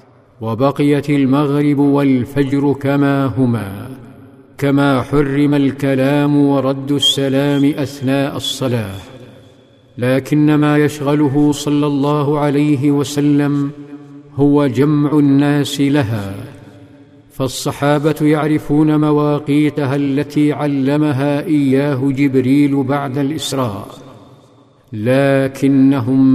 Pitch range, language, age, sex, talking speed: 130-145 Hz, Arabic, 50-69, male, 75 wpm